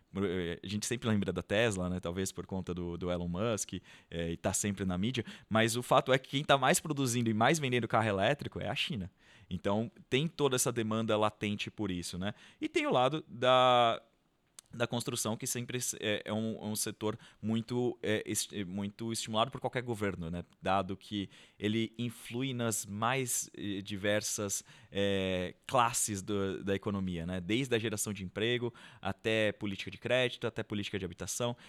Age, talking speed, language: 20-39, 170 wpm, Portuguese